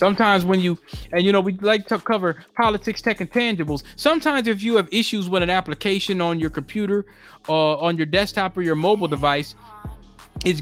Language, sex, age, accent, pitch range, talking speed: English, male, 20-39, American, 160-215 Hz, 200 wpm